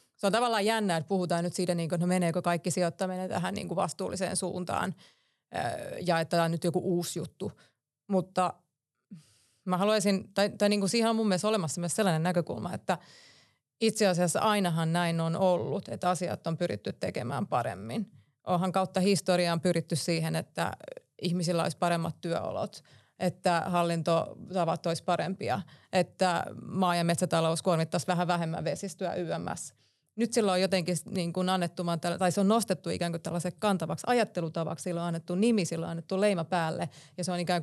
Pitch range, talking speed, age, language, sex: 170-190 Hz, 165 wpm, 30-49, Finnish, female